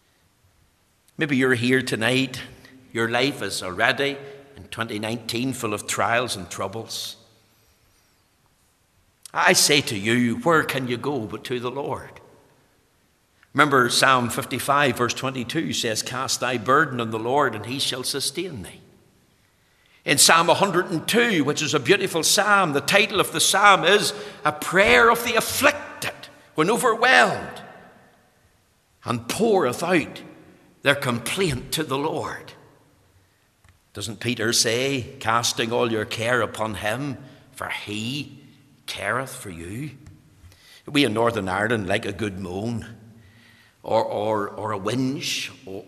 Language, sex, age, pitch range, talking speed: English, male, 60-79, 110-140 Hz, 130 wpm